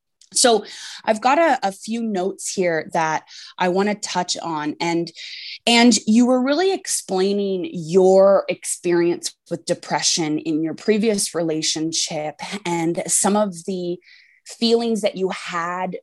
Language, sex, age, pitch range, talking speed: English, female, 20-39, 165-205 Hz, 135 wpm